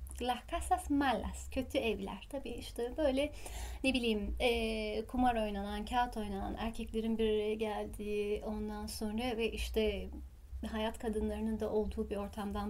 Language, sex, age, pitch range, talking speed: Turkish, female, 30-49, 215-295 Hz, 135 wpm